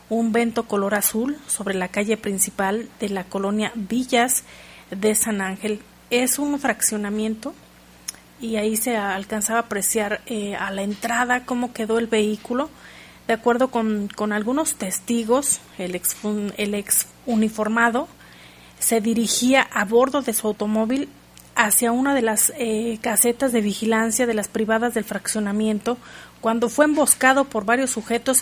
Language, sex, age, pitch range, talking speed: Spanish, female, 40-59, 210-240 Hz, 145 wpm